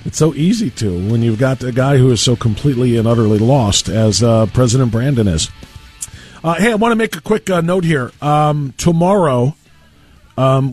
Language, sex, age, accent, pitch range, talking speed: English, male, 50-69, American, 115-150 Hz, 195 wpm